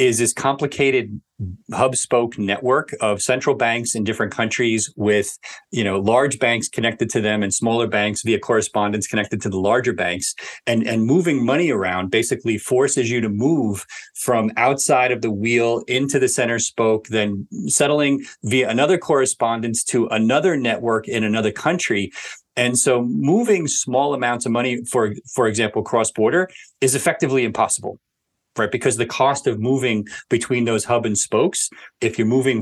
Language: English